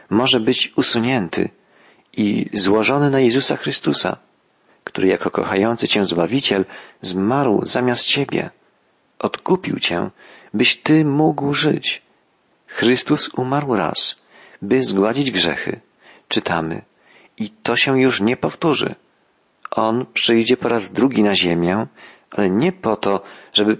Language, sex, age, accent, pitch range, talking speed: Polish, male, 40-59, native, 105-130 Hz, 120 wpm